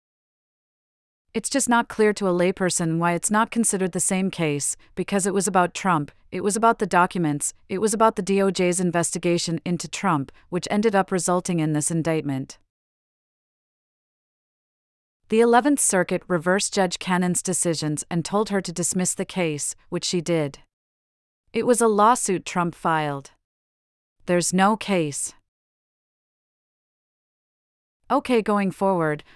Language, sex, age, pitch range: English, female, 40-59, 165-205 Hz